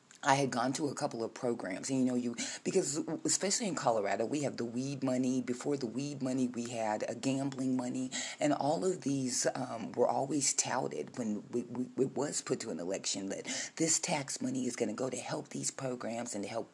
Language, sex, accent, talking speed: English, female, American, 220 wpm